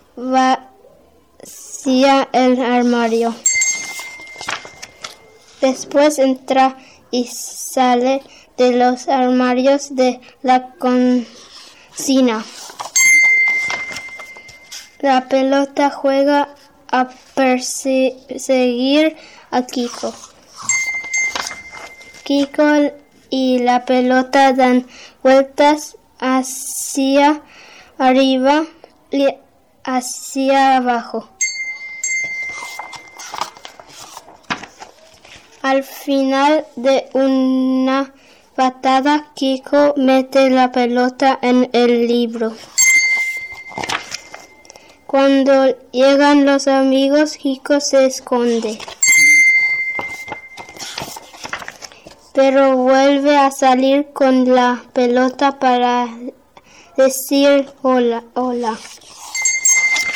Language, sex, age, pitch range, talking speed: Spanish, female, 10-29, 255-290 Hz, 60 wpm